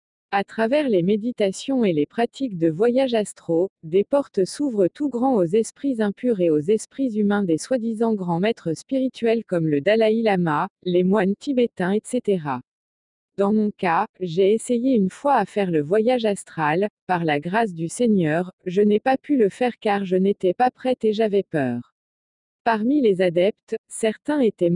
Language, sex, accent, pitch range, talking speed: French, female, French, 180-245 Hz, 170 wpm